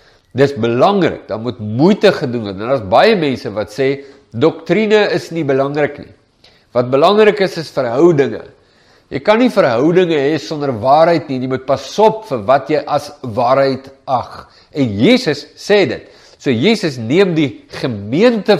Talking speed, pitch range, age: 160 wpm, 130-175 Hz, 50-69